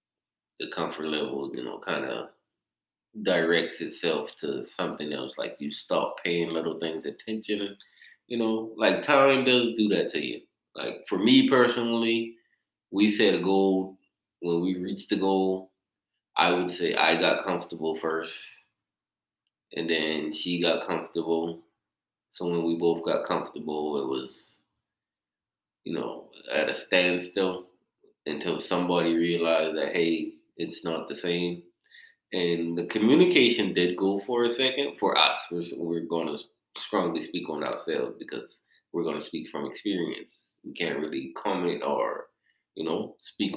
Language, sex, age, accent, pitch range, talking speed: English, male, 20-39, American, 85-115 Hz, 150 wpm